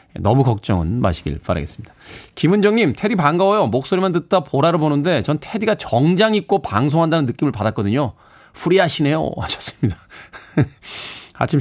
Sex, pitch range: male, 120-185 Hz